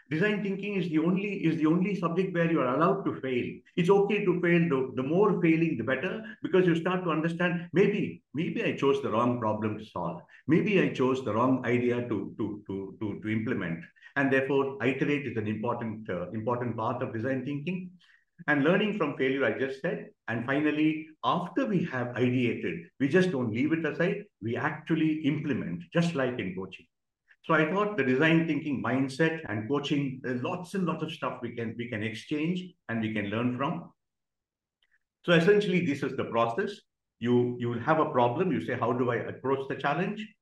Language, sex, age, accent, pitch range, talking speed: English, male, 50-69, Indian, 125-180 Hz, 195 wpm